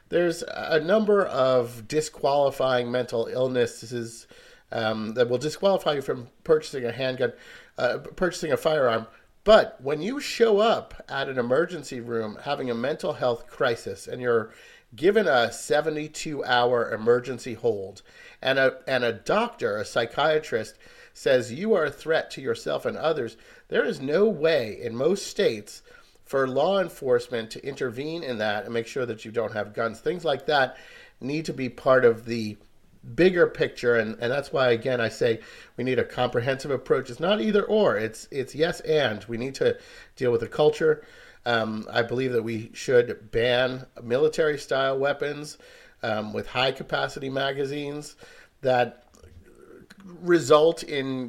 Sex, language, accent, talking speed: male, English, American, 155 wpm